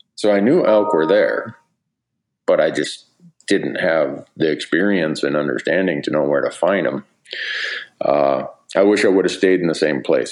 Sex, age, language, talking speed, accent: male, 40-59, English, 185 wpm, American